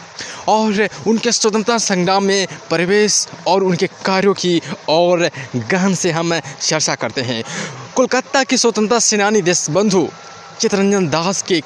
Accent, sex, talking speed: native, male, 130 wpm